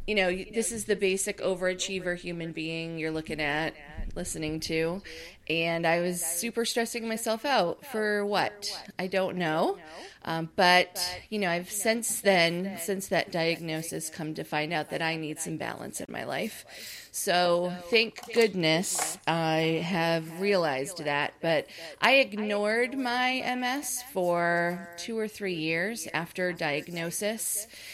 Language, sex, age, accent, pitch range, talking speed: English, female, 30-49, American, 165-210 Hz, 145 wpm